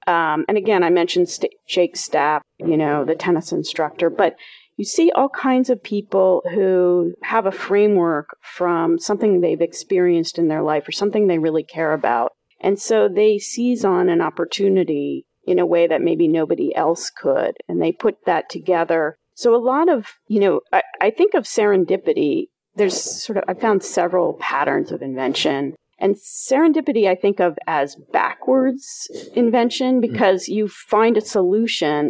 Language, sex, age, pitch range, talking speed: English, female, 40-59, 170-225 Hz, 165 wpm